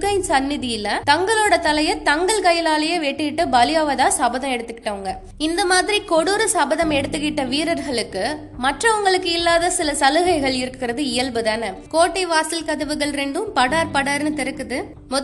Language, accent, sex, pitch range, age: Tamil, native, female, 270-345 Hz, 20-39